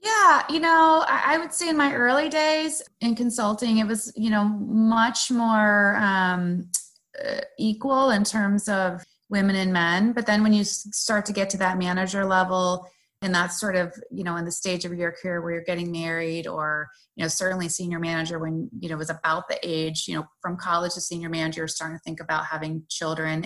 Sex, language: female, English